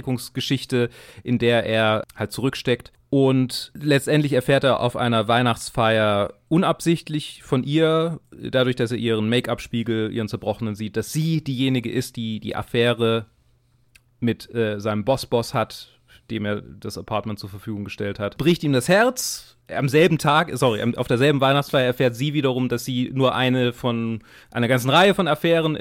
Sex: male